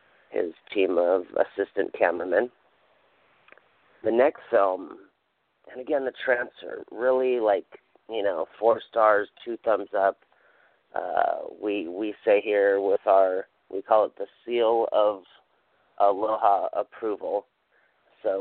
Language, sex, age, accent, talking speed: English, male, 40-59, American, 120 wpm